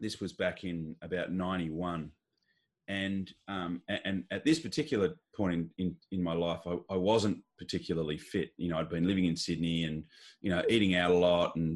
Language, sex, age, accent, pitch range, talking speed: English, male, 30-49, Australian, 85-105 Hz, 195 wpm